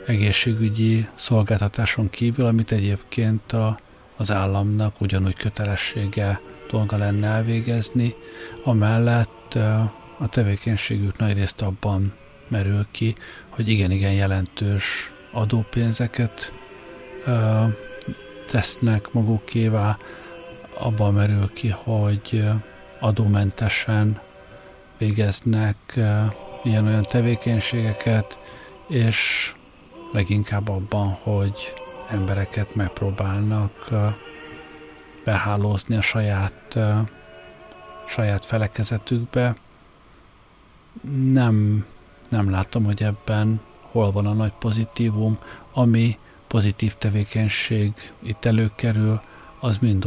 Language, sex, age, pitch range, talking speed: Hungarian, male, 50-69, 100-115 Hz, 75 wpm